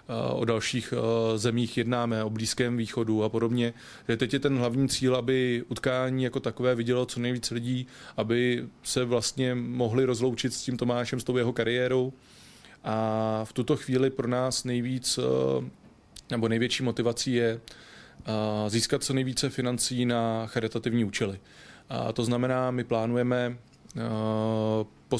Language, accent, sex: Czech, native, male